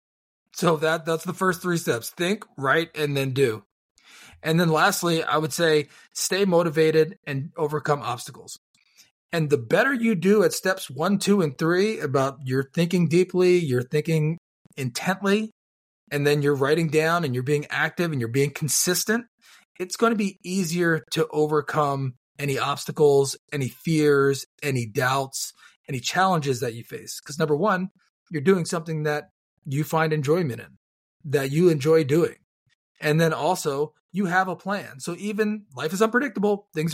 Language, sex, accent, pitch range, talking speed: English, male, American, 145-175 Hz, 160 wpm